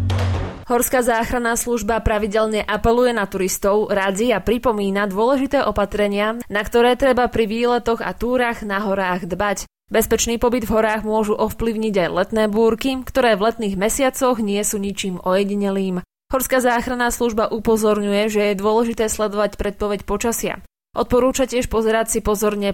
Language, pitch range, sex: Slovak, 195-240 Hz, female